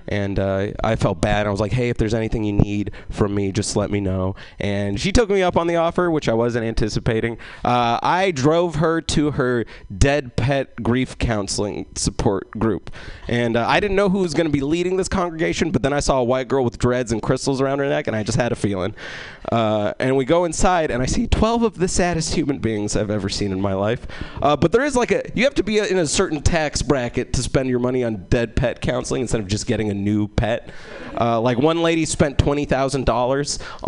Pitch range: 110-155 Hz